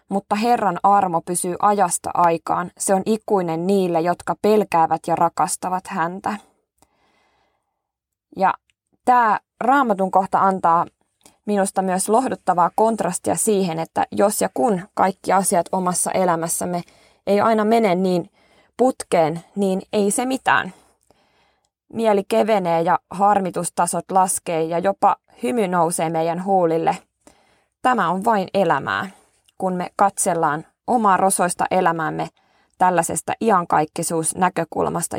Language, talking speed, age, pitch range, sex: Finnish, 110 wpm, 20-39, 170-210 Hz, female